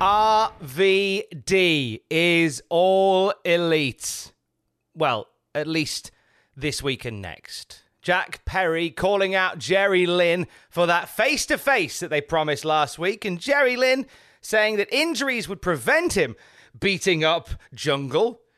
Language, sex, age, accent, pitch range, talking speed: English, male, 30-49, British, 135-190 Hz, 120 wpm